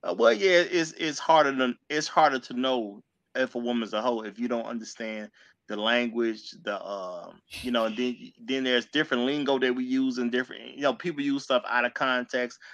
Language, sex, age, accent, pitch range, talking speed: English, male, 30-49, American, 120-145 Hz, 210 wpm